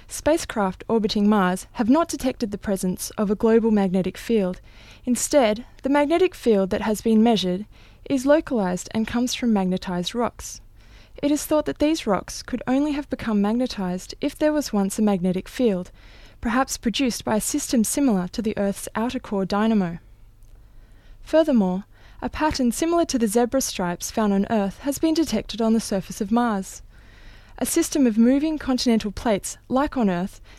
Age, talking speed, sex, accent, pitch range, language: 20-39, 170 wpm, female, Australian, 185-250 Hz, English